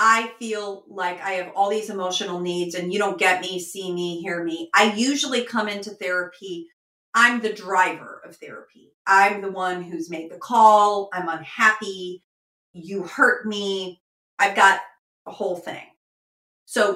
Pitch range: 190-225 Hz